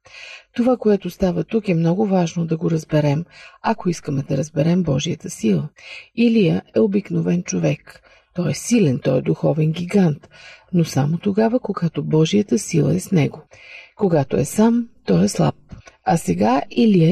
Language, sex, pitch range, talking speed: Bulgarian, female, 160-220 Hz, 160 wpm